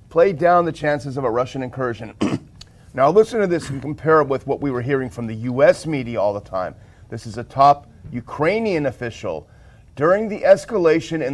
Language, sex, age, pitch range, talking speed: English, male, 40-59, 120-160 Hz, 195 wpm